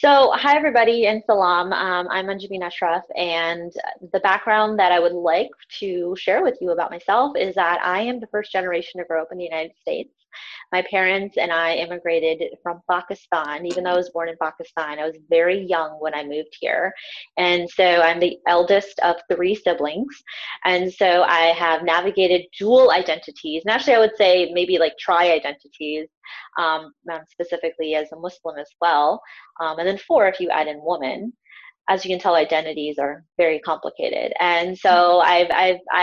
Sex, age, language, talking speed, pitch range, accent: female, 20-39, English, 180 wpm, 165-195 Hz, American